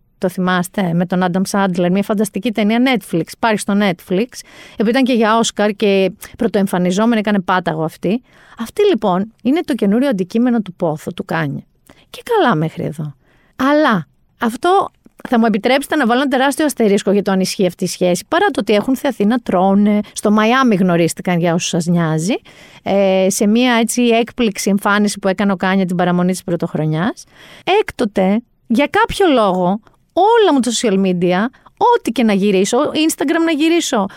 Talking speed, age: 165 wpm, 40-59